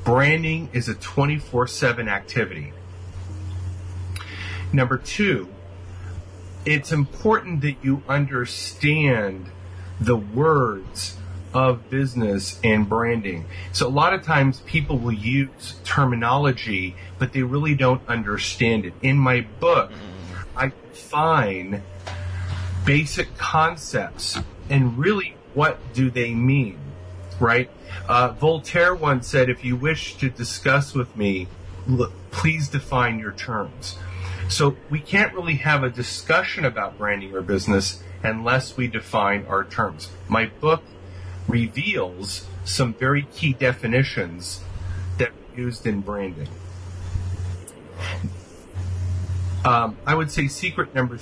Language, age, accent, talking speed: English, 40-59, American, 115 wpm